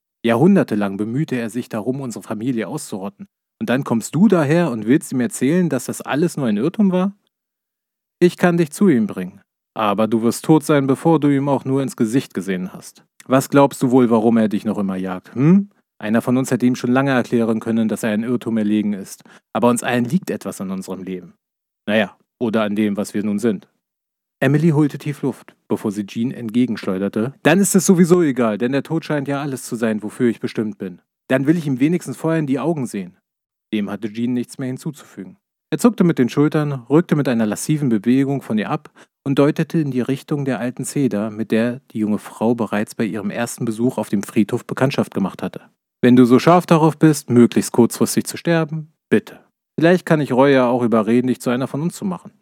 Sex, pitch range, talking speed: male, 115-155 Hz, 215 wpm